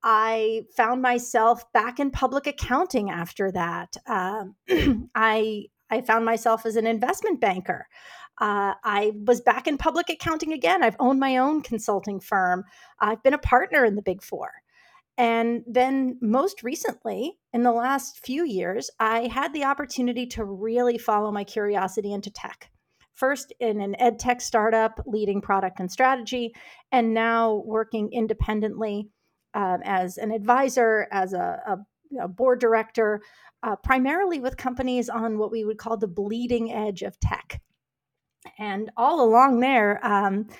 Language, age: English, 30-49